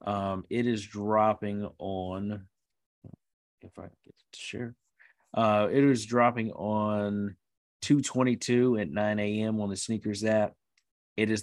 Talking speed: 130 wpm